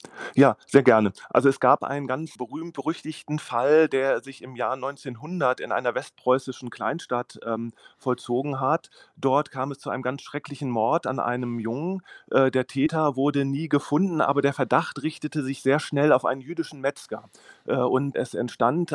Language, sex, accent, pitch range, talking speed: German, male, German, 120-145 Hz, 170 wpm